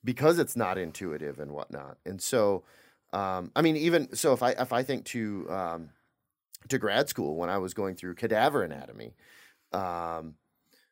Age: 30-49